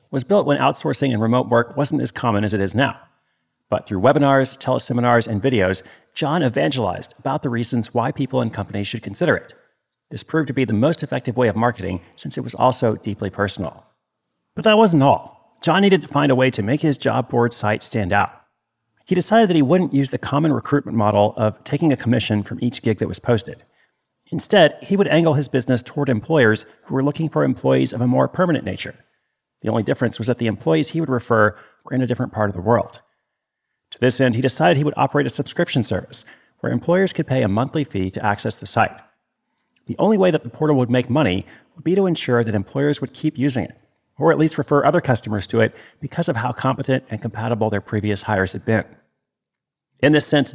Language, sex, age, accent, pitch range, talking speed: English, male, 40-59, American, 110-145 Hz, 220 wpm